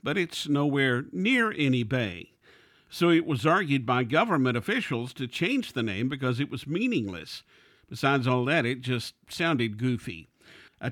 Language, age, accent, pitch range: English, 50-69, American, 125-155 Hz